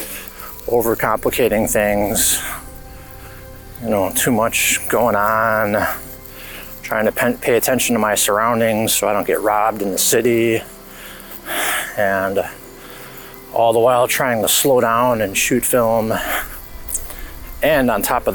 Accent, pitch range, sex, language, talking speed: American, 95-120 Hz, male, English, 125 wpm